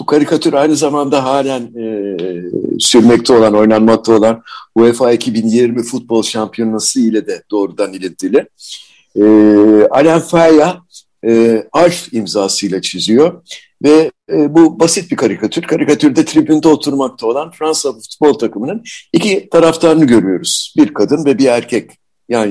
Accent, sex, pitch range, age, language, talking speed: native, male, 115-165 Hz, 60-79, Turkish, 125 wpm